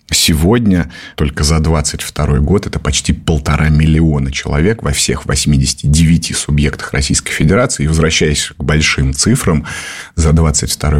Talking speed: 125 wpm